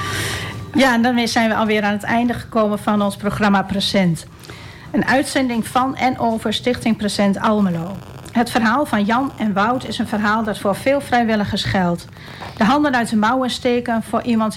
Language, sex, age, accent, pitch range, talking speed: Dutch, female, 40-59, Dutch, 195-240 Hz, 180 wpm